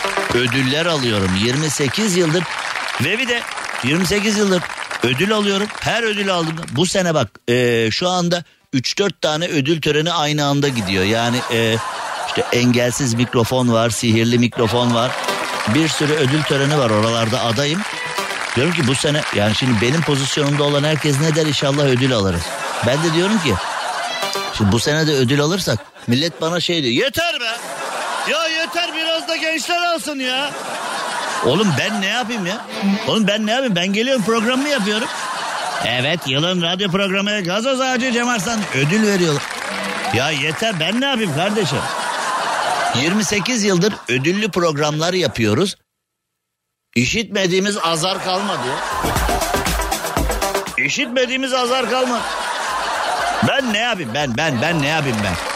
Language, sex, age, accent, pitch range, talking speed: Turkish, male, 60-79, native, 130-210 Hz, 140 wpm